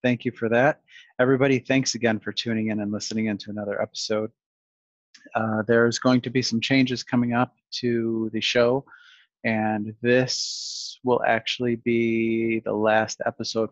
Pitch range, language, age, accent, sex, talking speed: 110-120 Hz, English, 30-49, American, male, 155 wpm